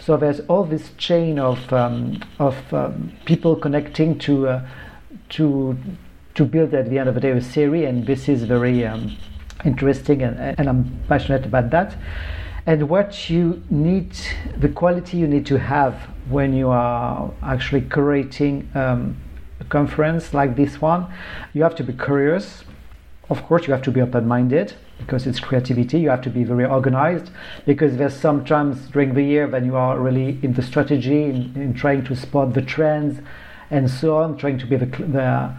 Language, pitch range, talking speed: English, 125-145 Hz, 180 wpm